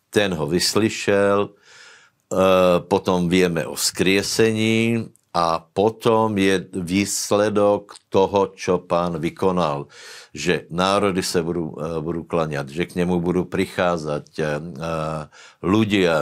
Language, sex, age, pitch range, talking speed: Slovak, male, 60-79, 80-95 Hz, 100 wpm